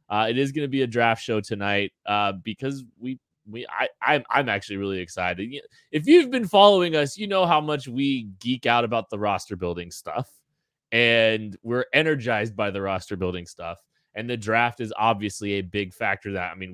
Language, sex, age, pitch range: English, male, 20-39, 95-140 Hz